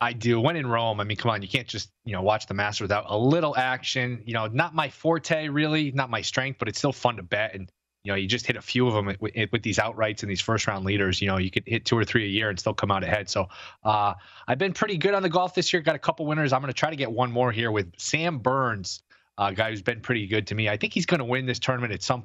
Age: 20-39